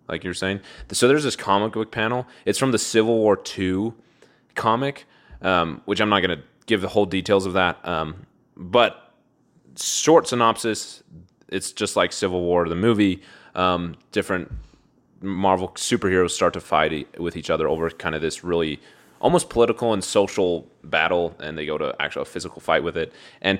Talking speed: 180 wpm